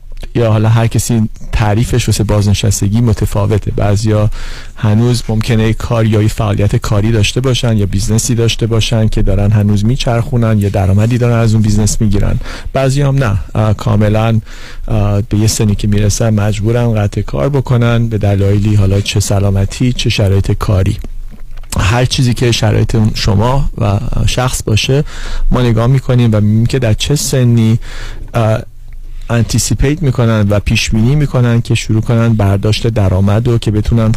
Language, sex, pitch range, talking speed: Persian, male, 105-120 Hz, 145 wpm